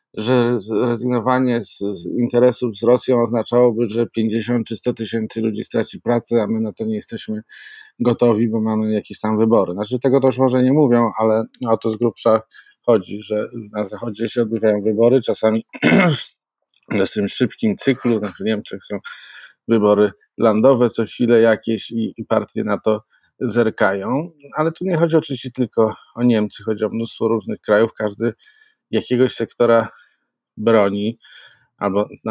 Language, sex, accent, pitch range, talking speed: Polish, male, native, 110-125 Hz, 160 wpm